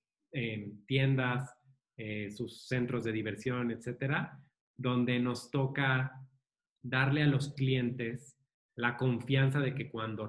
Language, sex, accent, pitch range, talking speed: Spanish, male, Mexican, 115-135 Hz, 115 wpm